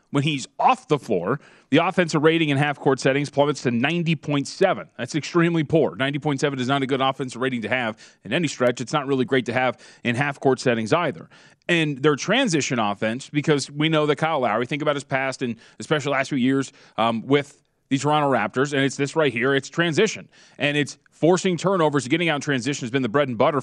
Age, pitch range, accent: 30-49, 125-155 Hz, American